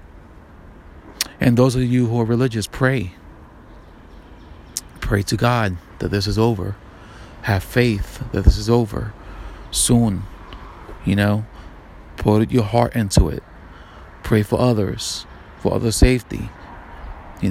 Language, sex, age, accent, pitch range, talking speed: English, male, 40-59, American, 90-115 Hz, 125 wpm